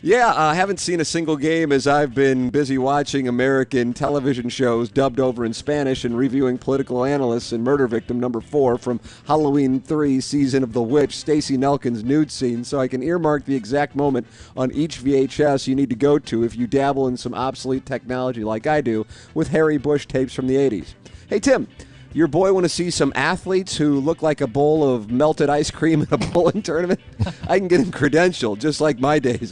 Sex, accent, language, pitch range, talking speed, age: male, American, English, 125-150 Hz, 205 wpm, 50-69